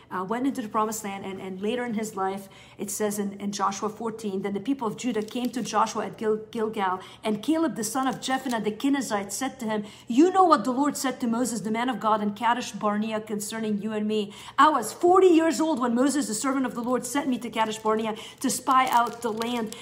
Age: 50-69